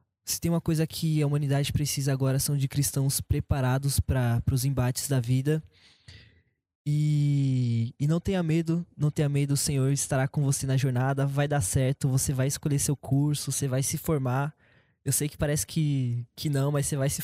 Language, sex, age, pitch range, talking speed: Portuguese, male, 20-39, 130-160 Hz, 195 wpm